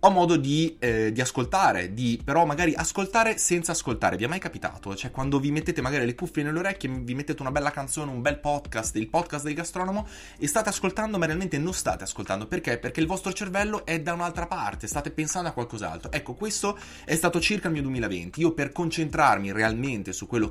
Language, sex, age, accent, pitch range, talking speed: Italian, male, 20-39, native, 110-165 Hz, 210 wpm